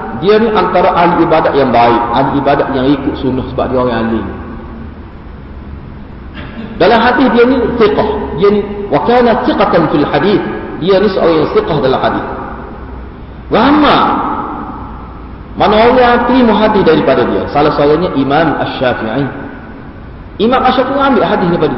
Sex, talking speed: male, 135 wpm